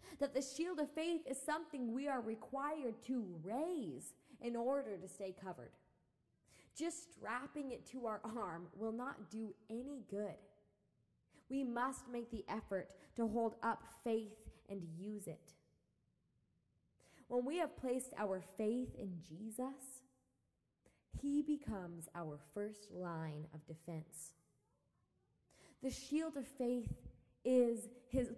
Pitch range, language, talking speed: 205-275 Hz, English, 130 wpm